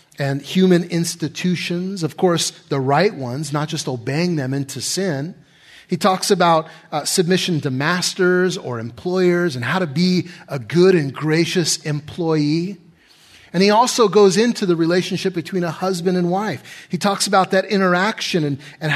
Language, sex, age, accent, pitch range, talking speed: English, male, 30-49, American, 145-185 Hz, 160 wpm